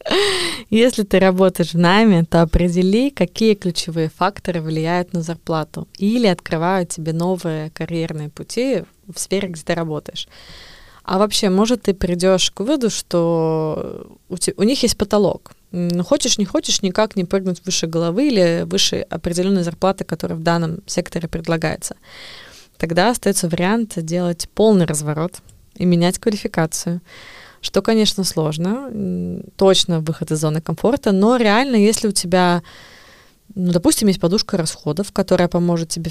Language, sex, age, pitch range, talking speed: Russian, female, 20-39, 170-205 Hz, 145 wpm